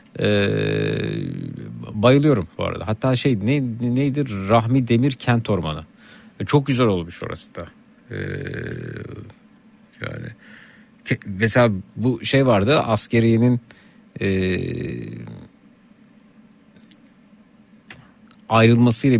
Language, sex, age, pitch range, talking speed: Turkish, male, 50-69, 110-145 Hz, 85 wpm